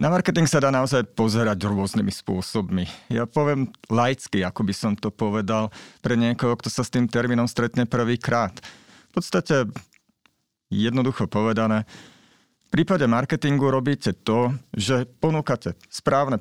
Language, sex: Slovak, male